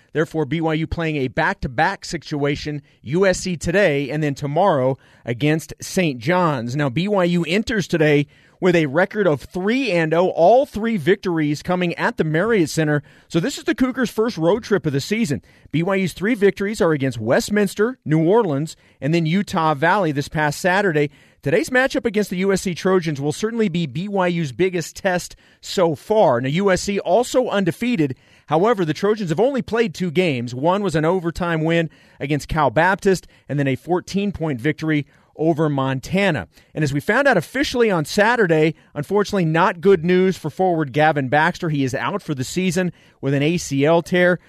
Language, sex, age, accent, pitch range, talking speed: English, male, 40-59, American, 150-195 Hz, 165 wpm